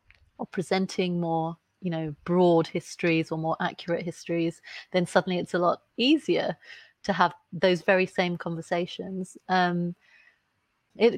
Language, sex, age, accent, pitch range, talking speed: English, female, 30-49, British, 170-195 Hz, 135 wpm